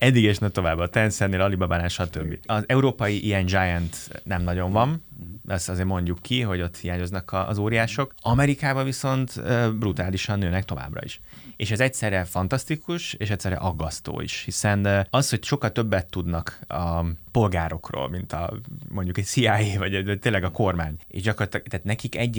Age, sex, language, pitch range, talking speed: 30-49, male, Hungarian, 90-115 Hz, 165 wpm